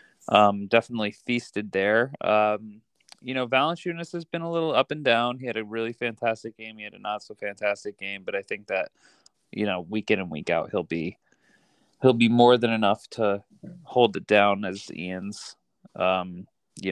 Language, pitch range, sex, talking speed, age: English, 100-115 Hz, male, 190 wpm, 20-39